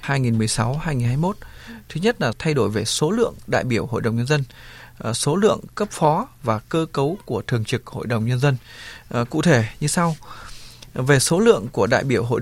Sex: male